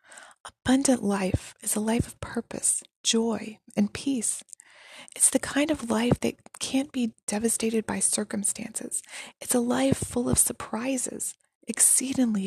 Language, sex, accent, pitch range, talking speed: English, female, American, 215-260 Hz, 135 wpm